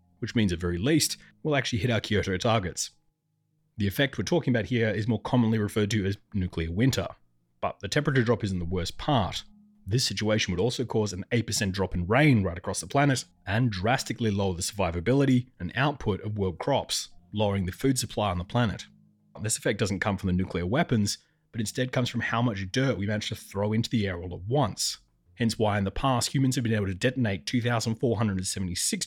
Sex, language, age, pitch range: male, English, 30-49, 95-120 Hz